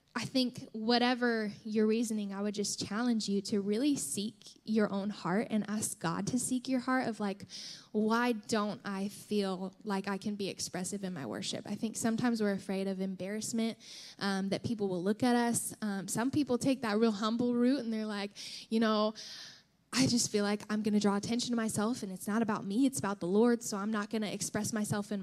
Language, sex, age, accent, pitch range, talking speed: English, female, 10-29, American, 200-235 Hz, 220 wpm